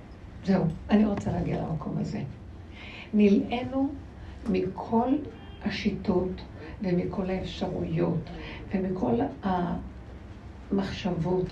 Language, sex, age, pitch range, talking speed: Hebrew, female, 60-79, 160-205 Hz, 70 wpm